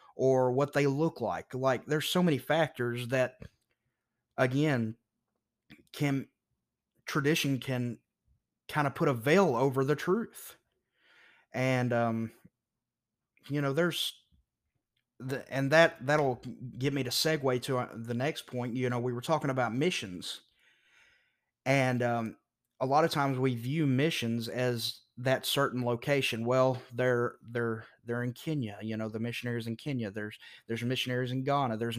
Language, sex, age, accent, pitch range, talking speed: English, male, 30-49, American, 120-145 Hz, 150 wpm